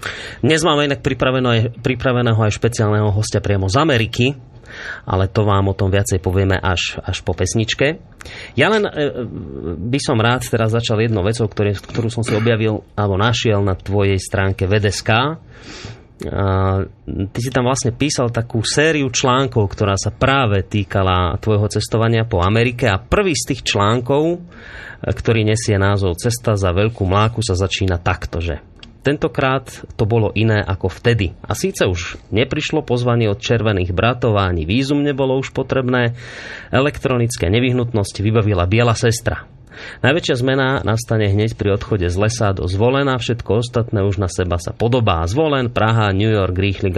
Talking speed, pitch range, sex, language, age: 150 wpm, 95-125 Hz, male, Slovak, 30-49